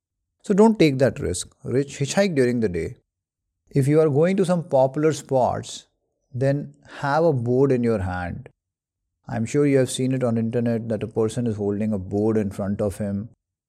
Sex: male